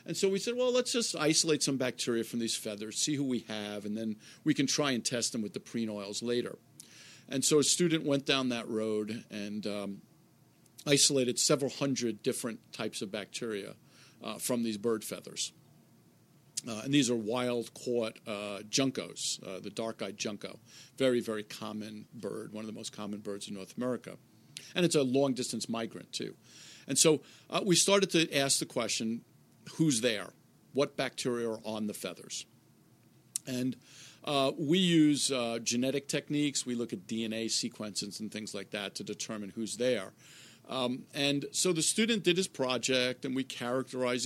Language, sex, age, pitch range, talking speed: English, male, 50-69, 110-145 Hz, 175 wpm